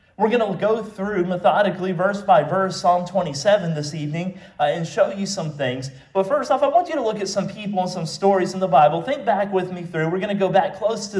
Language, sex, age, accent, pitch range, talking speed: English, male, 40-59, American, 155-205 Hz, 255 wpm